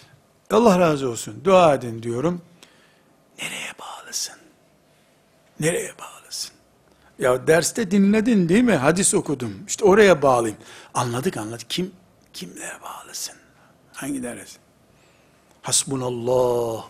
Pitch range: 135-205 Hz